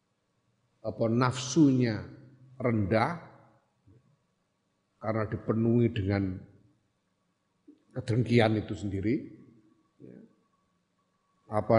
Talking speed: 50 wpm